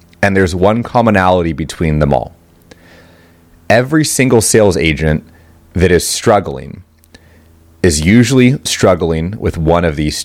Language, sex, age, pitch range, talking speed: English, male, 30-49, 80-95 Hz, 125 wpm